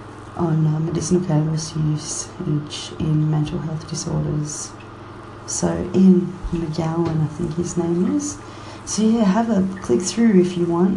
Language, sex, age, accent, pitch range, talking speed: English, female, 30-49, Australian, 115-180 Hz, 135 wpm